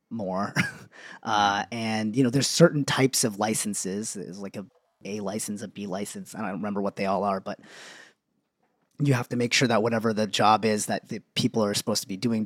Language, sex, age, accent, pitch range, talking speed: English, male, 30-49, American, 100-130 Hz, 210 wpm